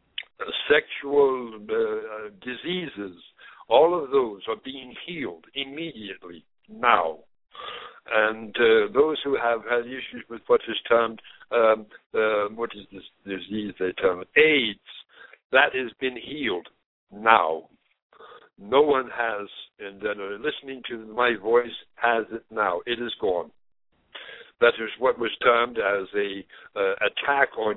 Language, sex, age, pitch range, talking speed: English, male, 60-79, 105-150 Hz, 135 wpm